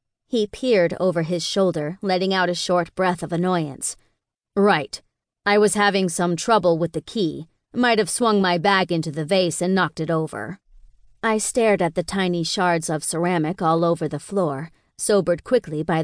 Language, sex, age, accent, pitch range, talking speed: English, female, 40-59, American, 165-205 Hz, 180 wpm